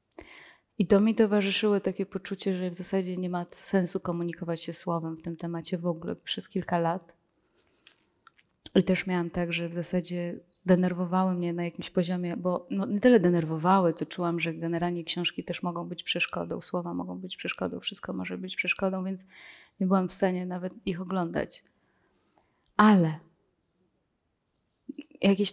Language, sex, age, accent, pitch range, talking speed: Polish, female, 20-39, native, 170-195 Hz, 155 wpm